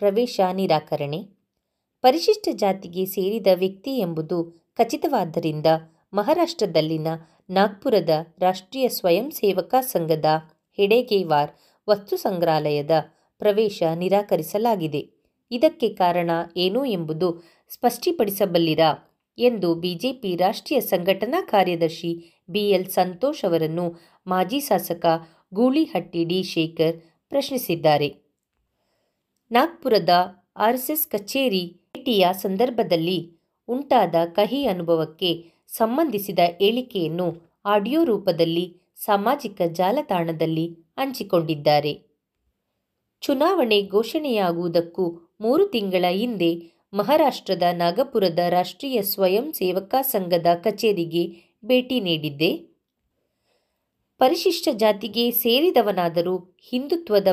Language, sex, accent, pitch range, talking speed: Kannada, female, native, 170-230 Hz, 70 wpm